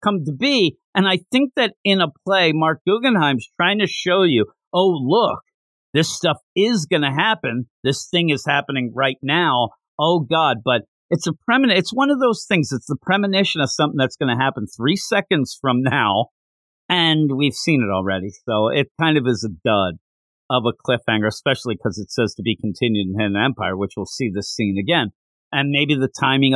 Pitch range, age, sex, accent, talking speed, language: 105-150 Hz, 50-69, male, American, 200 wpm, English